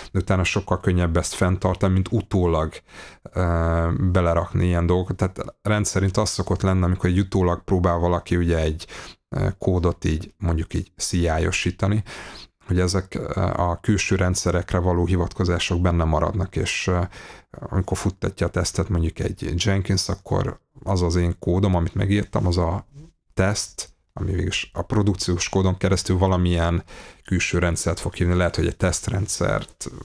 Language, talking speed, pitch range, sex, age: Hungarian, 140 wpm, 85-95 Hz, male, 30-49